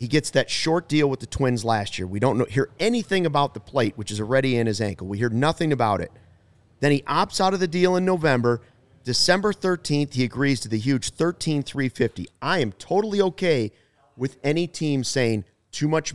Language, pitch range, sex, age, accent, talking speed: English, 110-150 Hz, male, 40-59, American, 210 wpm